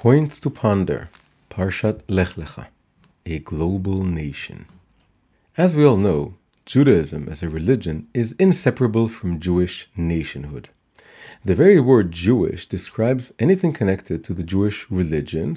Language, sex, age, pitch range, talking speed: English, male, 40-59, 90-140 Hz, 125 wpm